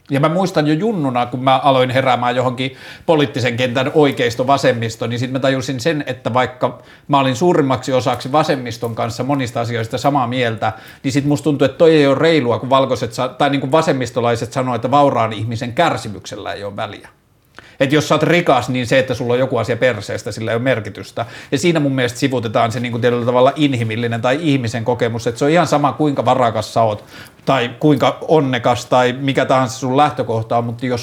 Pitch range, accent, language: 120-145 Hz, native, Finnish